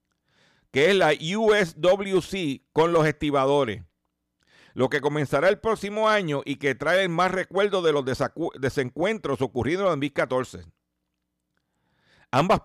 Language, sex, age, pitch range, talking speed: Spanish, male, 50-69, 120-180 Hz, 125 wpm